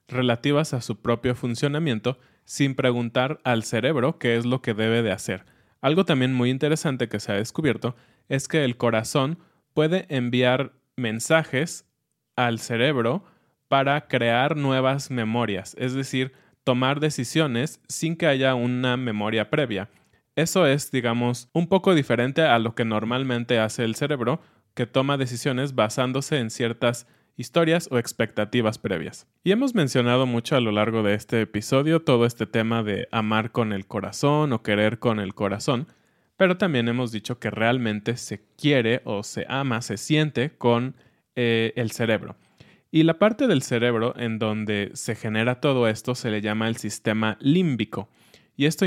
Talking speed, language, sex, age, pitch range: 160 wpm, Spanish, male, 20-39, 115-140 Hz